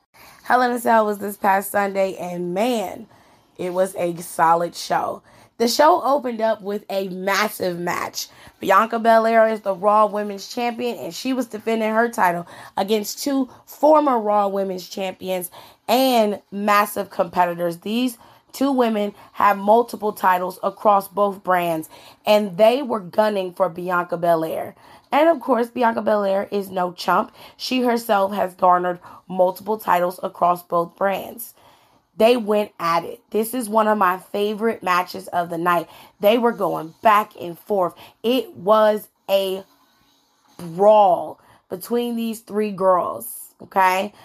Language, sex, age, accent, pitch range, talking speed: English, female, 20-39, American, 185-225 Hz, 145 wpm